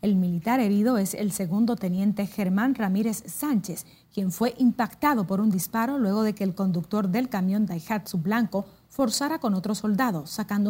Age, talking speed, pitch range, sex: 30-49, 170 wpm, 185-225 Hz, female